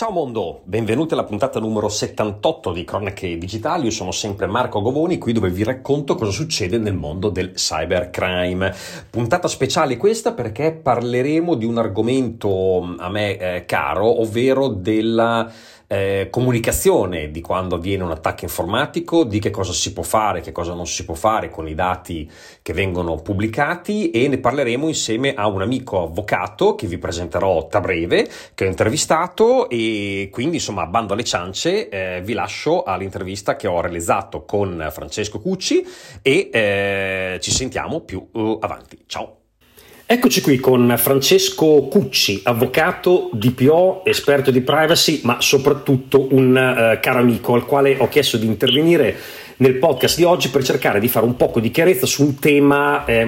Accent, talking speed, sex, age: native, 160 wpm, male, 30-49